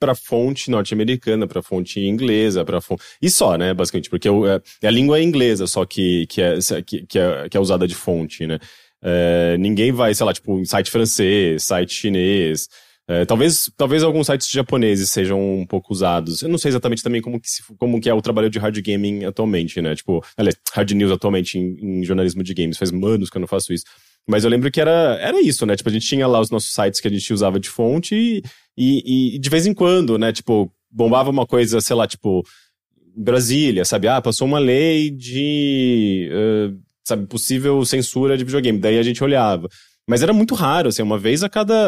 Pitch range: 100-125 Hz